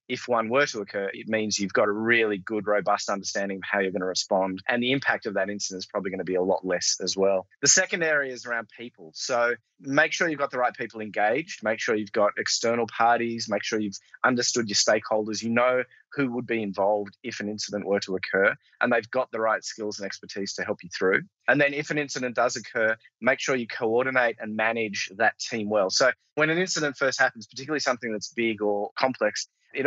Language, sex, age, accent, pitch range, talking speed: English, male, 20-39, Australian, 105-130 Hz, 235 wpm